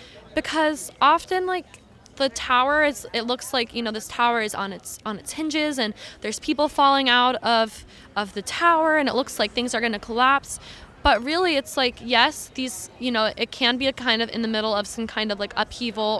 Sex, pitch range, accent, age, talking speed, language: female, 220-260 Hz, American, 20-39, 220 wpm, English